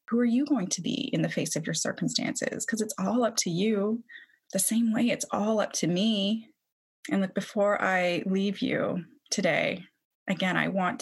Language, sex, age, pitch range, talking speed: English, female, 20-39, 180-225 Hz, 195 wpm